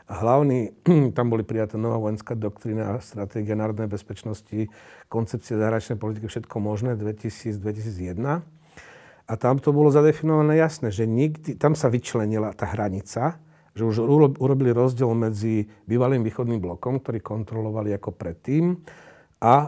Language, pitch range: Slovak, 105-130 Hz